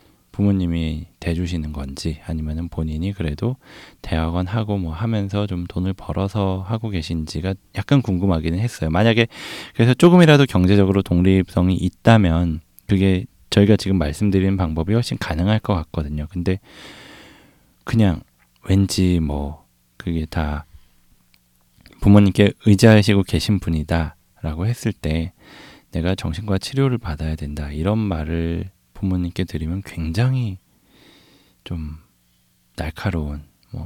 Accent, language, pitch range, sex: native, Korean, 80-100 Hz, male